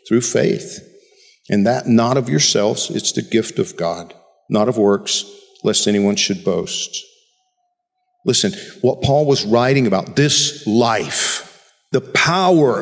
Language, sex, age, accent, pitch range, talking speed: English, male, 50-69, American, 115-165 Hz, 135 wpm